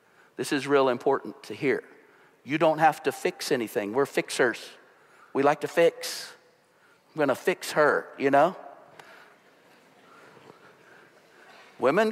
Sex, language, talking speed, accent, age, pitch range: male, English, 130 wpm, American, 50-69, 145-175 Hz